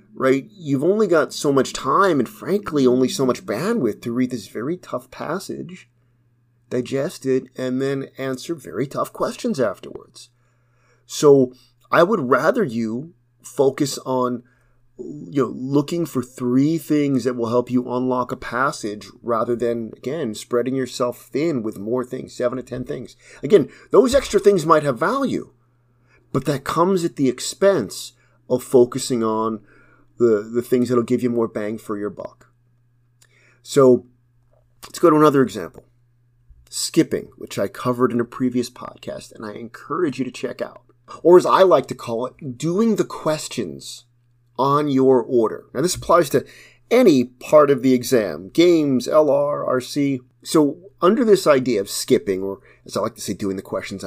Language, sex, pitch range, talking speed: English, male, 120-140 Hz, 165 wpm